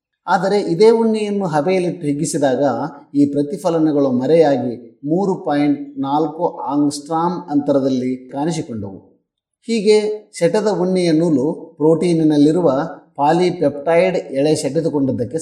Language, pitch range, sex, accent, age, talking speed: Kannada, 140-180 Hz, male, native, 30-49, 85 wpm